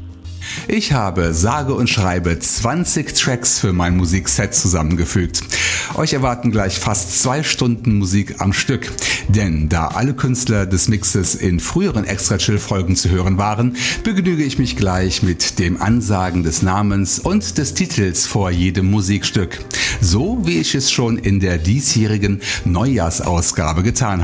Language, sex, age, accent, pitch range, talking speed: German, male, 60-79, German, 90-120 Hz, 145 wpm